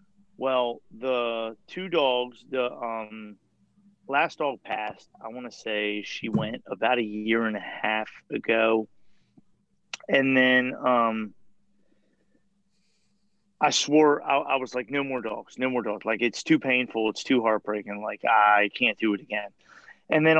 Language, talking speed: English, 155 wpm